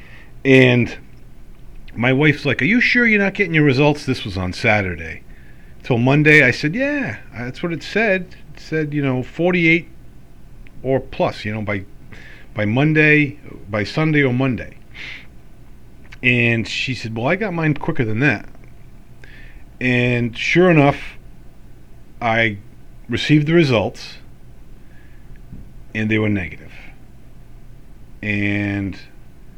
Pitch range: 85-140 Hz